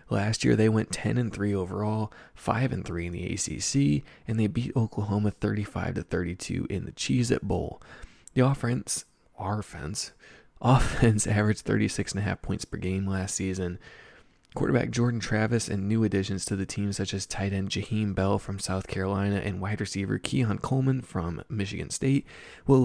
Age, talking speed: 20-39, 175 wpm